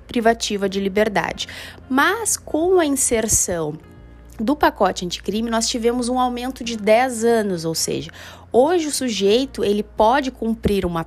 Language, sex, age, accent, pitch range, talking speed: Portuguese, female, 20-39, Brazilian, 190-245 Hz, 140 wpm